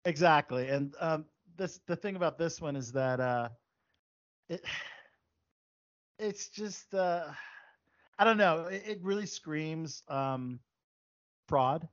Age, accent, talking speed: 40-59, American, 125 wpm